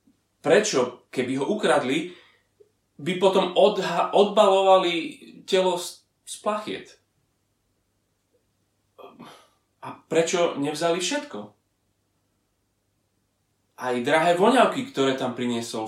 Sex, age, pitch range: male, 30-49, 100-170 Hz